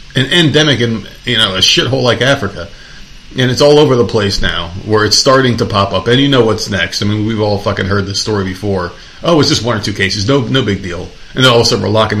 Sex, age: male, 30-49